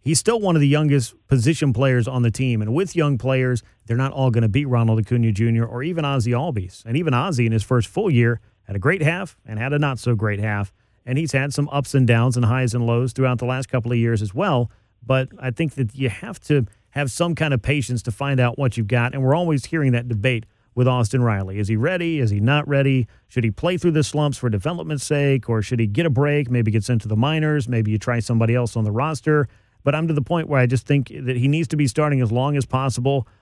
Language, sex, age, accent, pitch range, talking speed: English, male, 40-59, American, 115-145 Hz, 260 wpm